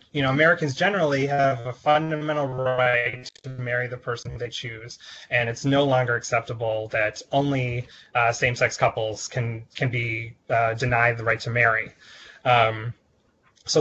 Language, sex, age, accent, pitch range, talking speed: English, male, 20-39, American, 120-145 Hz, 150 wpm